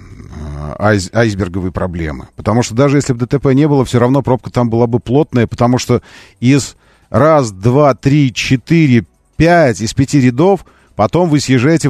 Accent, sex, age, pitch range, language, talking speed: native, male, 40-59, 100-150 Hz, Russian, 155 wpm